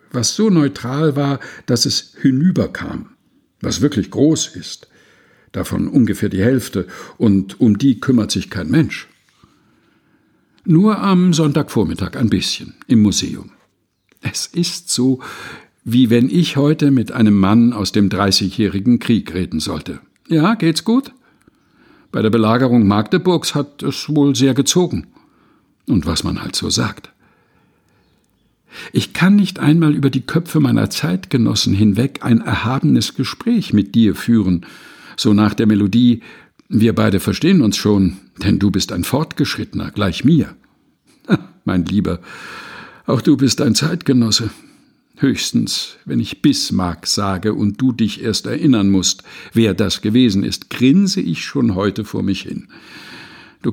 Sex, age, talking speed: male, 60-79, 140 wpm